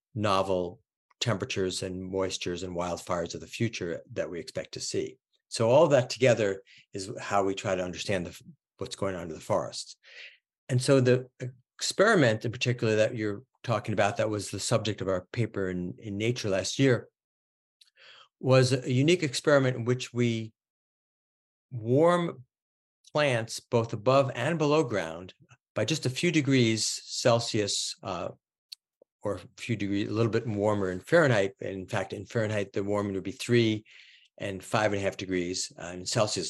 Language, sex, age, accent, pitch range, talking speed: English, male, 50-69, American, 95-125 Hz, 165 wpm